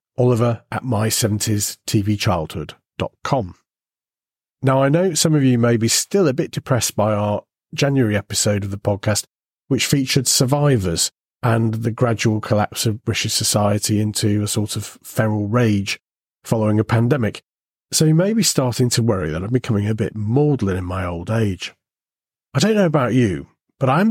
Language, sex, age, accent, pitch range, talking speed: English, male, 40-59, British, 105-135 Hz, 160 wpm